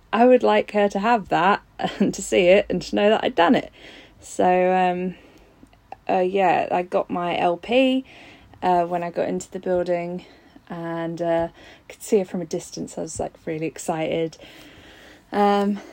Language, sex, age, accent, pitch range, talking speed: English, female, 20-39, British, 165-200 Hz, 175 wpm